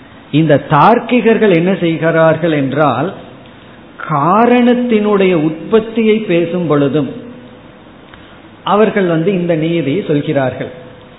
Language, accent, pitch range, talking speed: Tamil, native, 160-205 Hz, 75 wpm